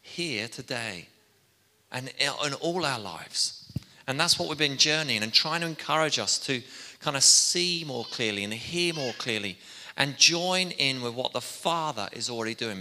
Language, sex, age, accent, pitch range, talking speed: English, male, 30-49, British, 115-155 Hz, 180 wpm